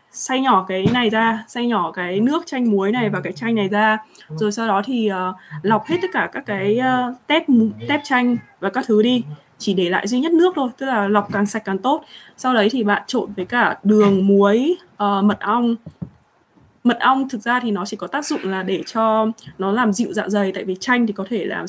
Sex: female